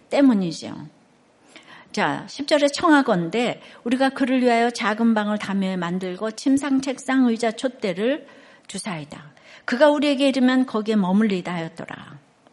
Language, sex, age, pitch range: Korean, female, 60-79, 200-270 Hz